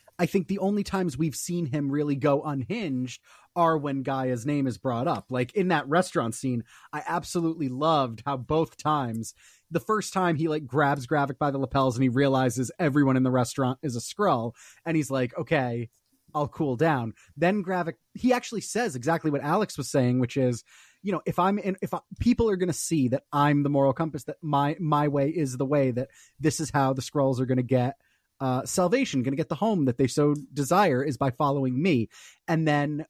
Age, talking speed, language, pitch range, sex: 30-49, 215 wpm, English, 135-175 Hz, male